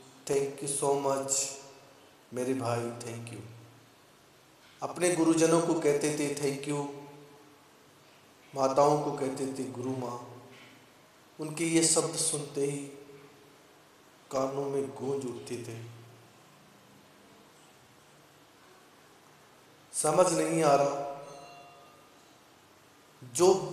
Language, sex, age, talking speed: English, male, 50-69, 90 wpm